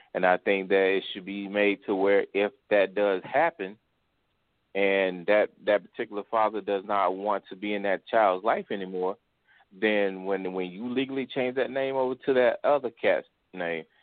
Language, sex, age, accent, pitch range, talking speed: English, male, 30-49, American, 90-110 Hz, 185 wpm